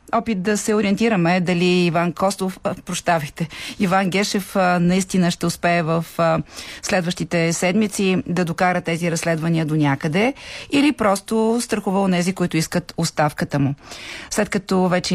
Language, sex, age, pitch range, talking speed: Bulgarian, female, 30-49, 170-205 Hz, 145 wpm